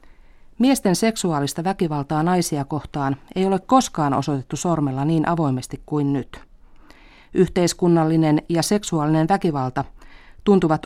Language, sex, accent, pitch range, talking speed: Finnish, female, native, 140-175 Hz, 105 wpm